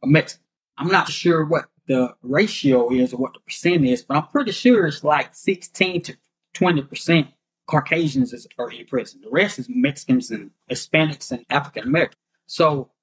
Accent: American